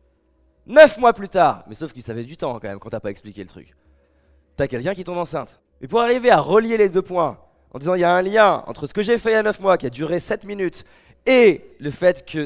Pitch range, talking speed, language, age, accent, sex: 125-180 Hz, 275 wpm, French, 20-39, French, male